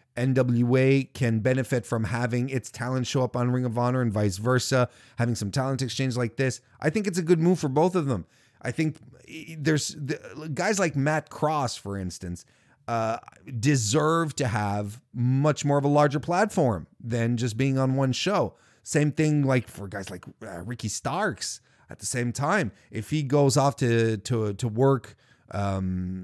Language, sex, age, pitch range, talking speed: English, male, 30-49, 105-135 Hz, 180 wpm